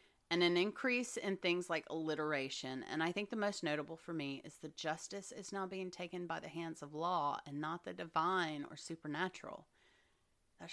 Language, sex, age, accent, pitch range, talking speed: English, female, 30-49, American, 145-195 Hz, 190 wpm